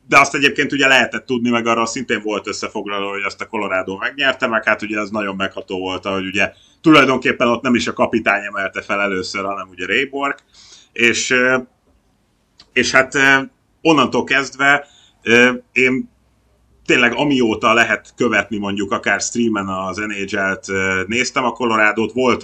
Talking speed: 150 wpm